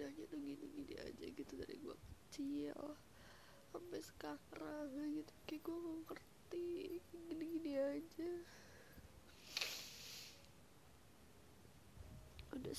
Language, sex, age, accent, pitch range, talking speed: Indonesian, female, 20-39, native, 285-320 Hz, 85 wpm